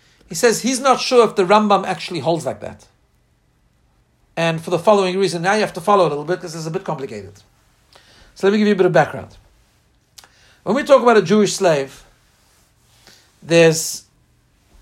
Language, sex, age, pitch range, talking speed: English, male, 60-79, 170-215 Hz, 195 wpm